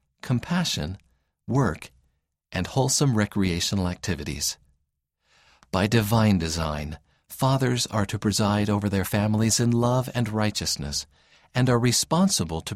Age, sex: 50-69, male